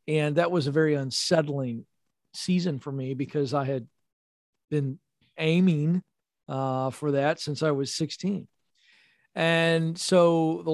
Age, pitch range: 40-59, 140-170 Hz